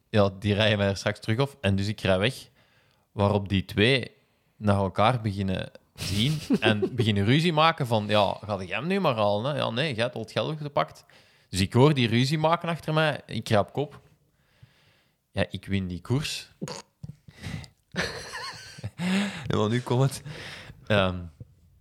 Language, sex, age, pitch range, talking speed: Dutch, male, 20-39, 100-125 Hz, 170 wpm